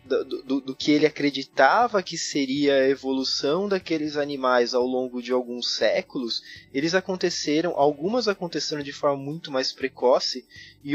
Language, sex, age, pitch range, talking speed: Portuguese, male, 20-39, 135-180 Hz, 150 wpm